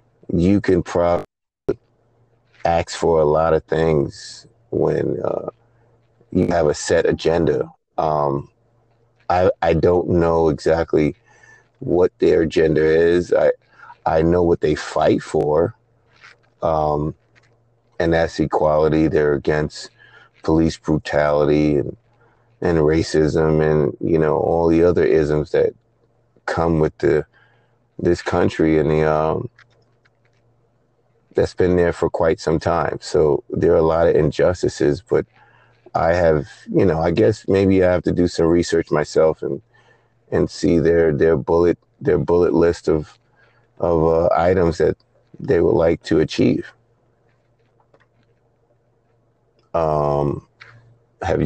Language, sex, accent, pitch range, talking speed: English, male, American, 80-115 Hz, 130 wpm